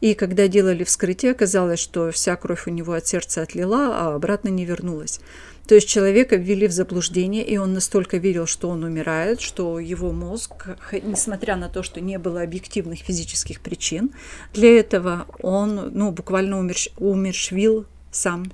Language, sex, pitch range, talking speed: Russian, female, 175-205 Hz, 160 wpm